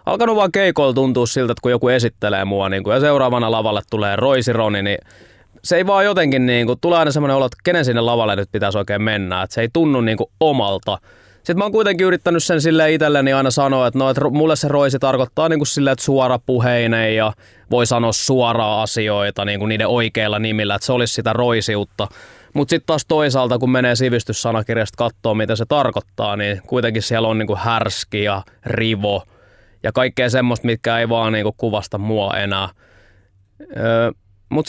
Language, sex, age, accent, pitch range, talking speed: Finnish, male, 20-39, native, 105-135 Hz, 180 wpm